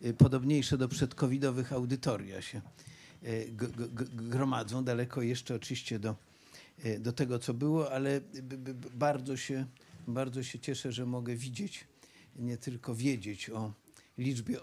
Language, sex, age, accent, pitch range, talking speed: Polish, male, 50-69, native, 110-135 Hz, 125 wpm